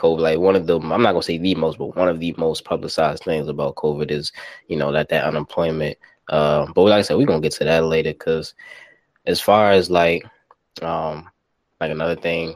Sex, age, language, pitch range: male, 20-39, English, 80-95 Hz